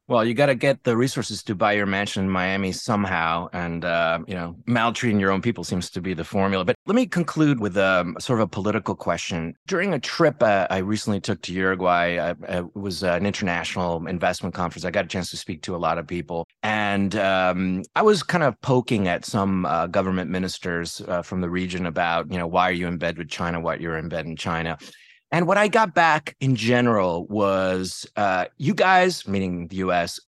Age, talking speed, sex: 30-49, 220 wpm, male